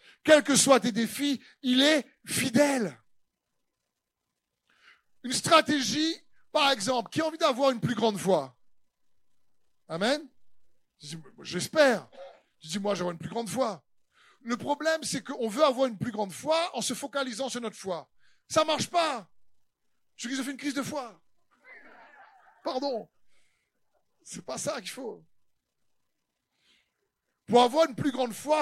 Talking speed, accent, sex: 145 wpm, French, male